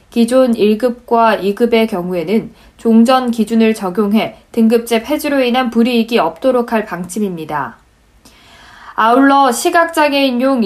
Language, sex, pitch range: Korean, female, 210-260 Hz